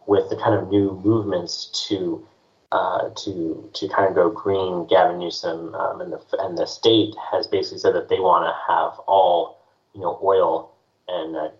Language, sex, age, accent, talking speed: English, male, 30-49, American, 185 wpm